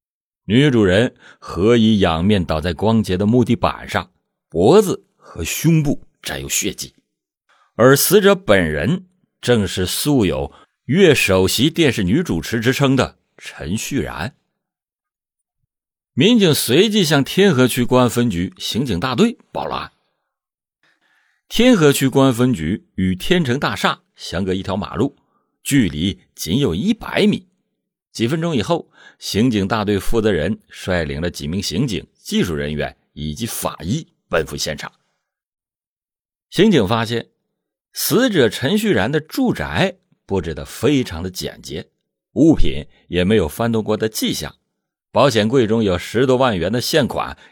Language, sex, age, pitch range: Chinese, male, 50-69, 95-150 Hz